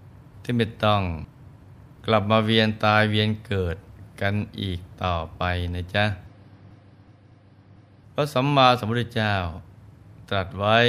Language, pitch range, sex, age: Thai, 100-120 Hz, male, 20-39